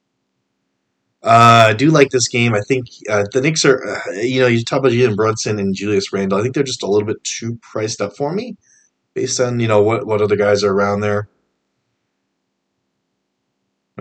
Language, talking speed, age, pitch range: English, 200 wpm, 30-49, 95-125 Hz